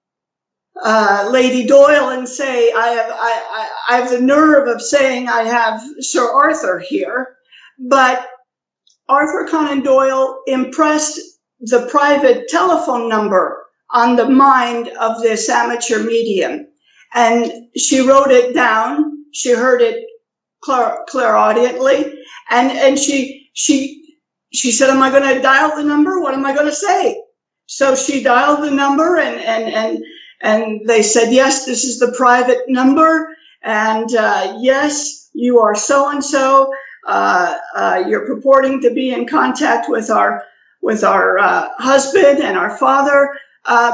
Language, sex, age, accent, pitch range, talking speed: English, female, 50-69, American, 245-295 Hz, 145 wpm